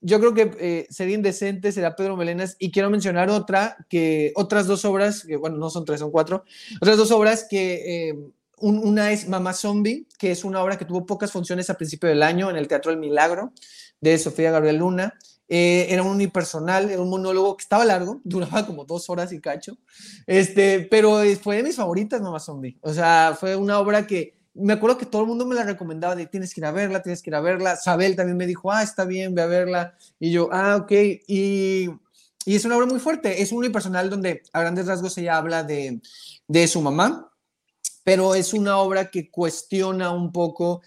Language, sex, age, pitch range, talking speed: Spanish, male, 30-49, 165-200 Hz, 215 wpm